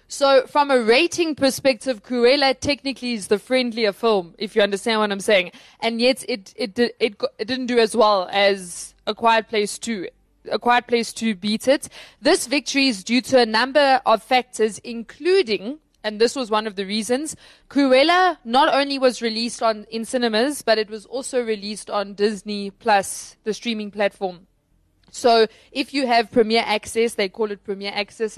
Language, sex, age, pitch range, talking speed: English, female, 20-39, 210-255 Hz, 180 wpm